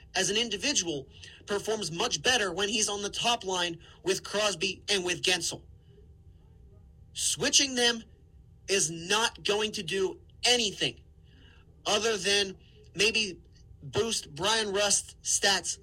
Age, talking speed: 30-49, 120 wpm